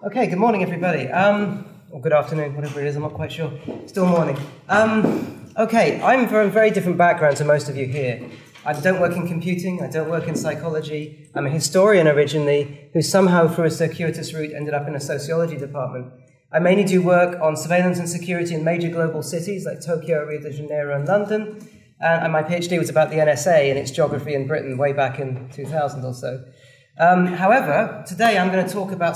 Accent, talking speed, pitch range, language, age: British, 210 wpm, 150-195 Hz, English, 30-49